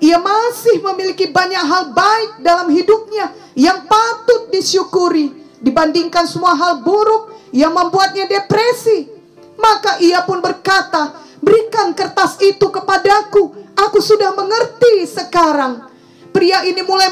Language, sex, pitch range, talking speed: English, female, 335-400 Hz, 115 wpm